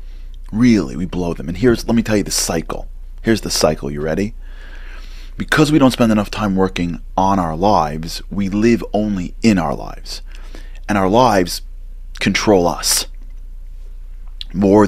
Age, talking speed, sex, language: 30-49, 155 wpm, male, English